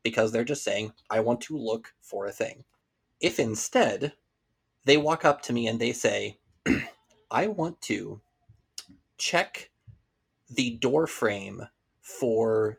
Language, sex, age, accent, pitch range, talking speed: English, male, 30-49, American, 110-130 Hz, 135 wpm